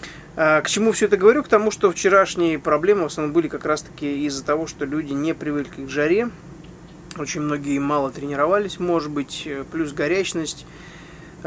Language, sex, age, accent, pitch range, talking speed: Russian, male, 20-39, native, 140-165 Hz, 165 wpm